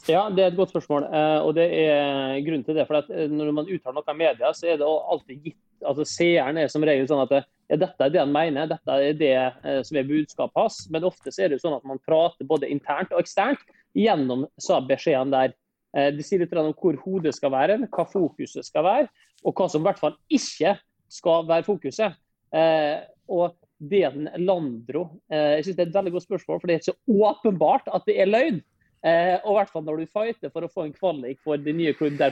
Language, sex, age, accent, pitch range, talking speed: English, male, 30-49, Swedish, 150-195 Hz, 220 wpm